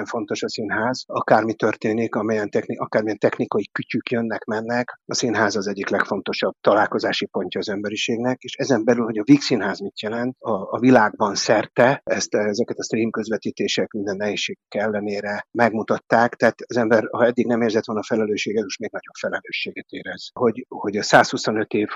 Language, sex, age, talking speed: Hungarian, male, 60-79, 170 wpm